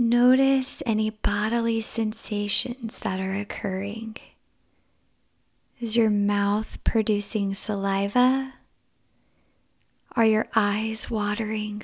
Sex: female